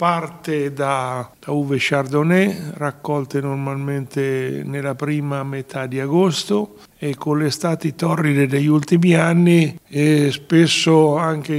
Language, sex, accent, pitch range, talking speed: Italian, male, native, 140-160 Hz, 120 wpm